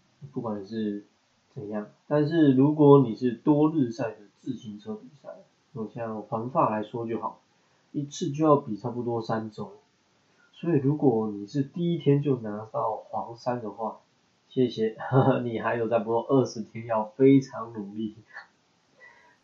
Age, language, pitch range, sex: 20-39, Chinese, 110-145 Hz, male